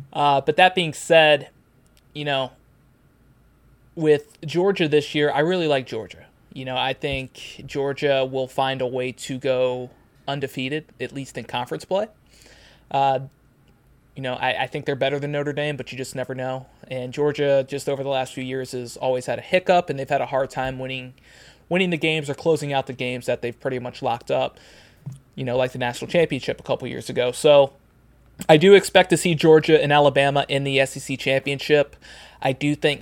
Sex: male